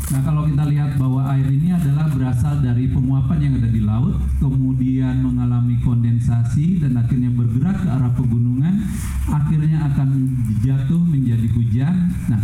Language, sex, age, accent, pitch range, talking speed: Indonesian, male, 40-59, native, 120-145 Hz, 145 wpm